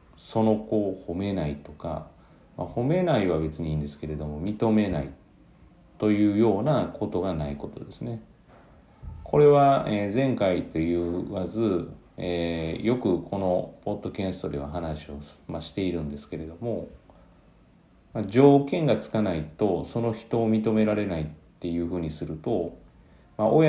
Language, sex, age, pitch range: Japanese, male, 40-59, 80-115 Hz